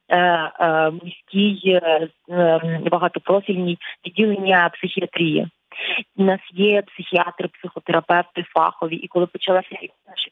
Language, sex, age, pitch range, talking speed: Ukrainian, female, 20-39, 165-180 Hz, 95 wpm